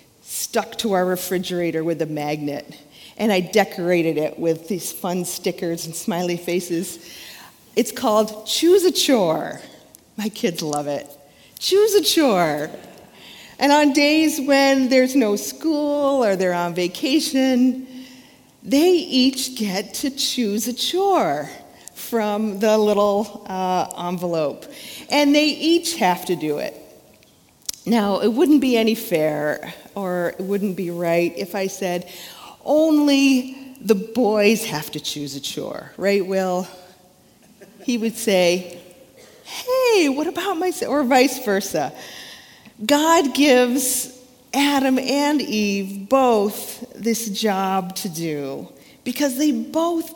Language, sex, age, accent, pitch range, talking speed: English, female, 40-59, American, 180-275 Hz, 130 wpm